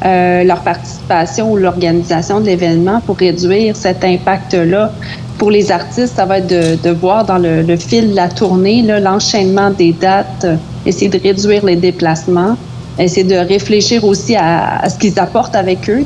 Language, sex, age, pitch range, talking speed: French, female, 30-49, 175-210 Hz, 175 wpm